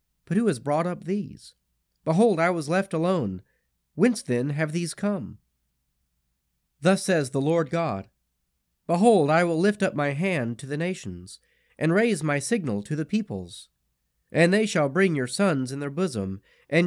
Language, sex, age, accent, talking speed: English, male, 30-49, American, 170 wpm